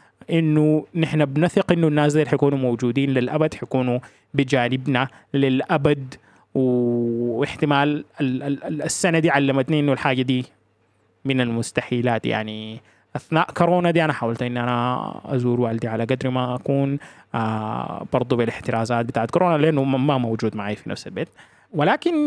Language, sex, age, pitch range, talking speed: Arabic, male, 20-39, 120-155 Hz, 130 wpm